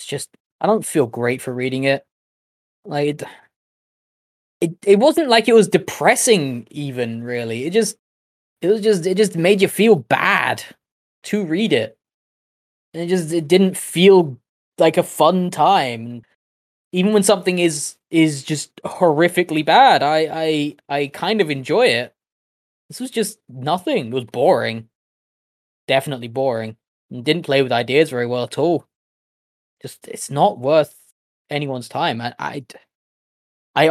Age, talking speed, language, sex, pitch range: 20-39, 150 wpm, English, male, 120-175 Hz